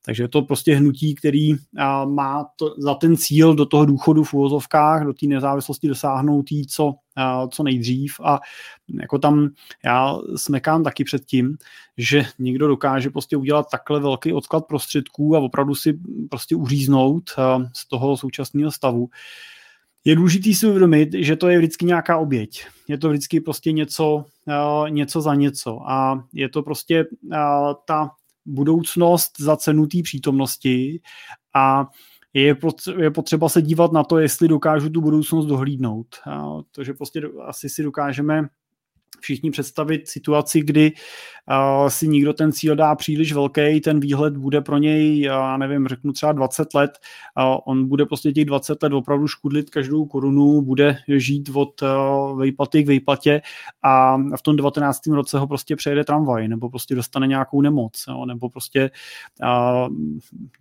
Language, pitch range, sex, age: Czech, 135-155 Hz, male, 30-49